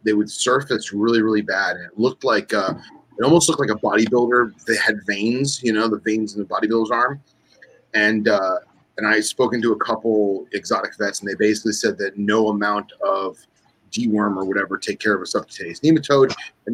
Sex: male